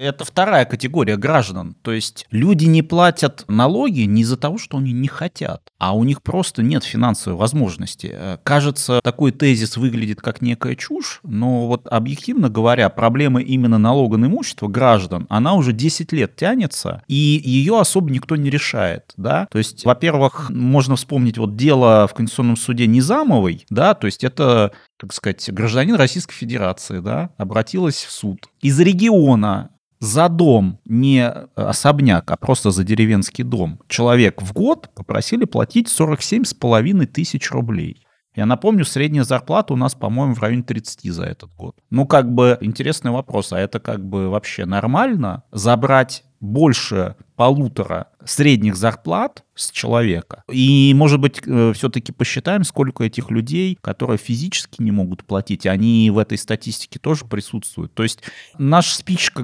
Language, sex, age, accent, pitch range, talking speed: Russian, male, 30-49, native, 110-145 Hz, 150 wpm